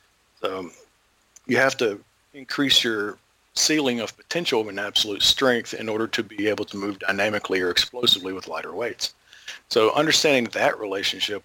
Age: 50-69